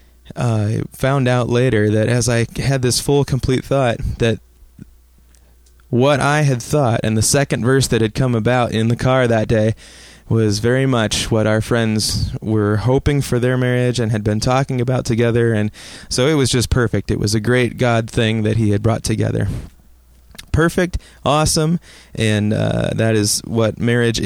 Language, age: English, 20-39